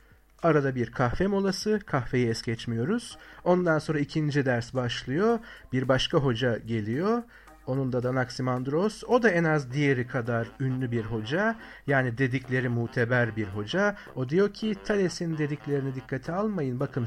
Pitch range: 125-195 Hz